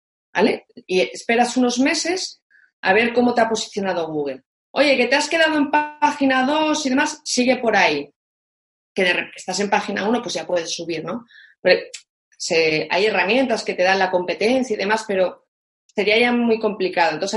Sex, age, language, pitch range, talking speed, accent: female, 30-49, Spanish, 195-270 Hz, 185 wpm, Spanish